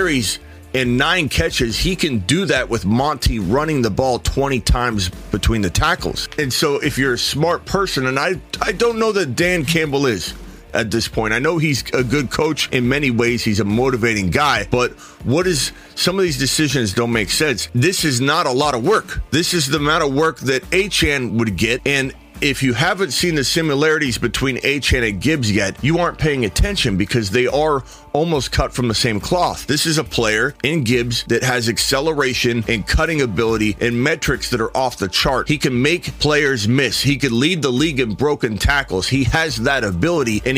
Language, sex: English, male